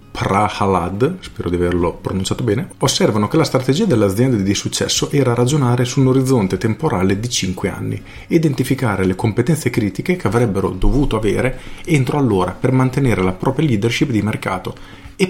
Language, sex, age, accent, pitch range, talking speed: Italian, male, 40-59, native, 100-130 Hz, 155 wpm